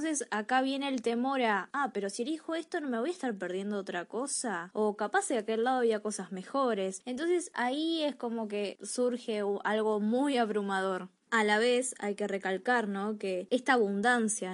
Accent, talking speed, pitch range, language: Argentinian, 190 wpm, 205-275 Hz, Spanish